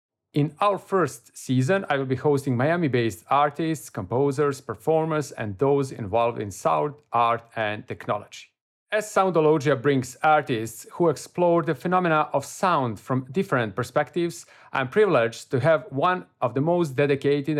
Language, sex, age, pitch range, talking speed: English, male, 40-59, 130-170 Hz, 145 wpm